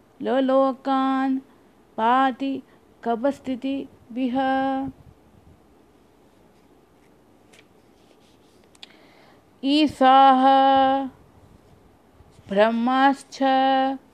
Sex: female